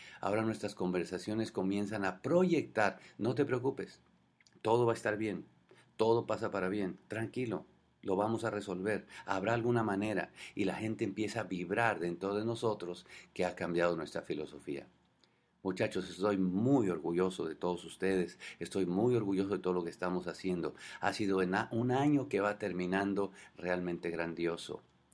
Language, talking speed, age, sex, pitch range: English, 155 wpm, 50-69, male, 90-105 Hz